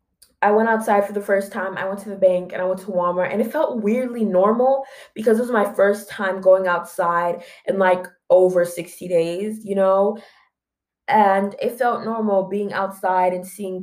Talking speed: 195 wpm